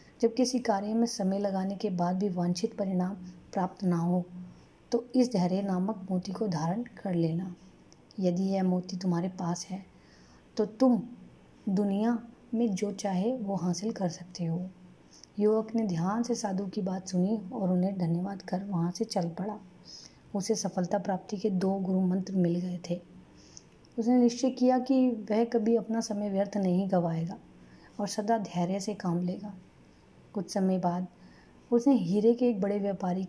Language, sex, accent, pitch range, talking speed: Hindi, female, native, 180-215 Hz, 165 wpm